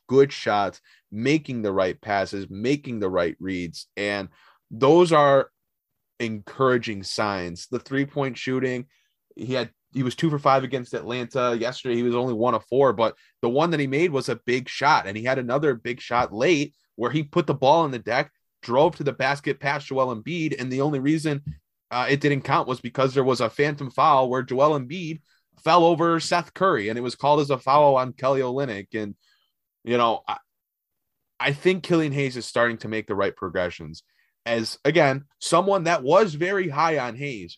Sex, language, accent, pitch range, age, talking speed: male, English, American, 110-145 Hz, 20-39, 195 wpm